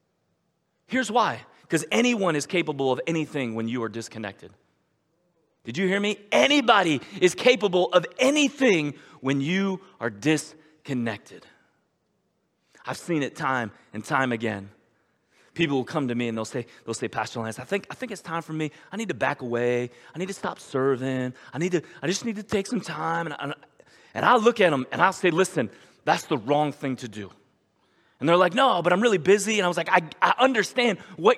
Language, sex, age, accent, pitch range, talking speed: Russian, male, 30-49, American, 150-225 Hz, 195 wpm